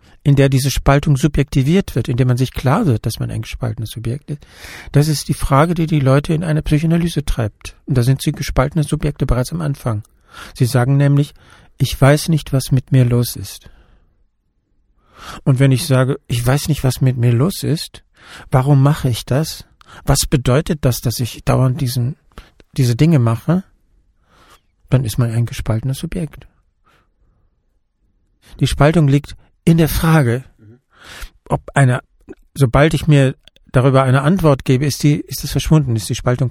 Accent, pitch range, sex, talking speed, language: German, 125-150 Hz, male, 170 wpm, German